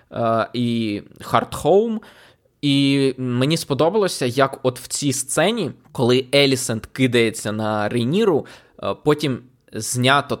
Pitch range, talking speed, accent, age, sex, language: 120-155 Hz, 100 wpm, native, 20-39, male, Ukrainian